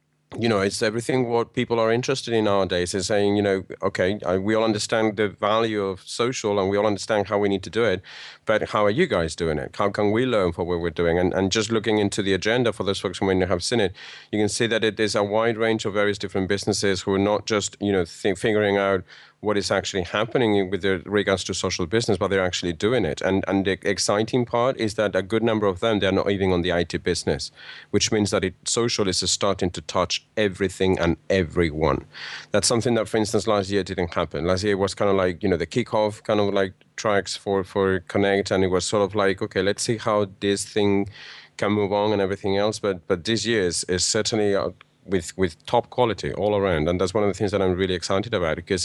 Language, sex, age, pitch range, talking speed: English, male, 40-59, 95-110 Hz, 245 wpm